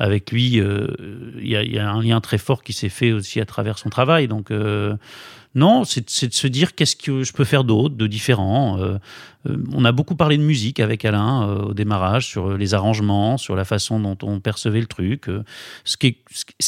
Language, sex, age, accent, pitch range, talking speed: French, male, 30-49, French, 105-130 Hz, 225 wpm